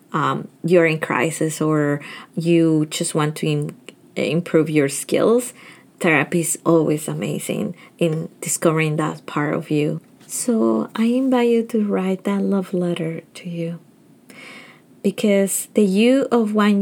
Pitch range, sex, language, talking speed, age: 165-215 Hz, female, English, 135 wpm, 20-39